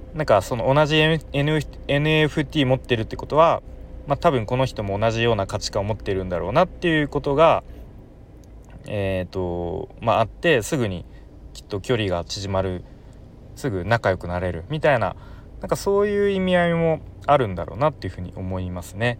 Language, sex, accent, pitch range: Japanese, male, native, 95-135 Hz